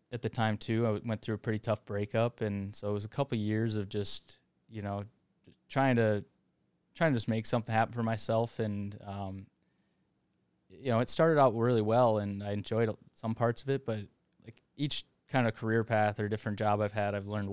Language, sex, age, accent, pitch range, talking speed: English, male, 20-39, American, 100-115 Hz, 220 wpm